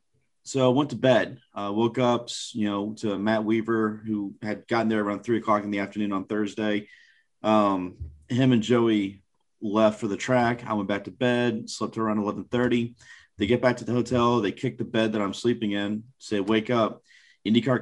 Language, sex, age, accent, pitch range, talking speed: English, male, 30-49, American, 105-125 Hz, 200 wpm